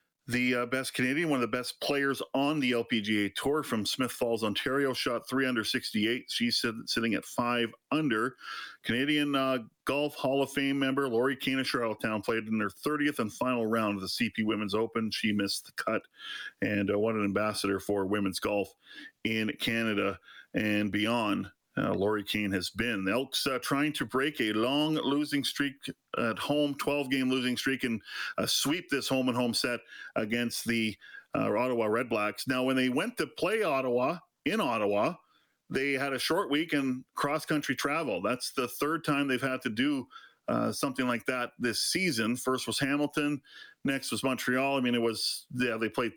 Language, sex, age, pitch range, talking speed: English, male, 40-59, 110-140 Hz, 190 wpm